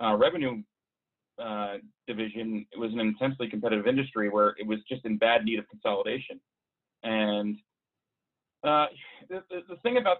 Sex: male